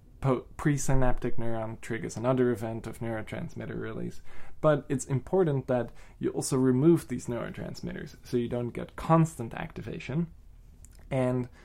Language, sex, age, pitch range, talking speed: English, male, 20-39, 110-135 Hz, 125 wpm